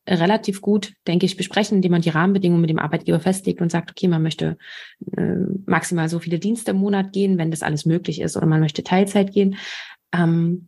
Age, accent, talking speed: 20-39, German, 210 wpm